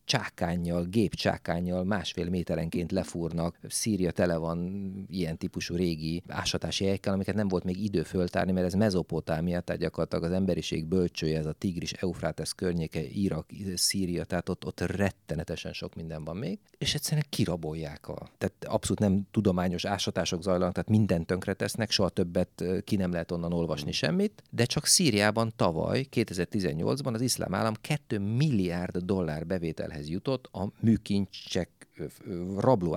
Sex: male